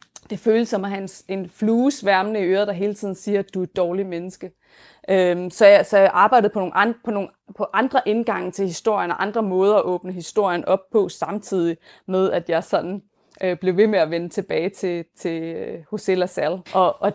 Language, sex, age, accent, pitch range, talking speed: Danish, female, 20-39, native, 185-215 Hz, 205 wpm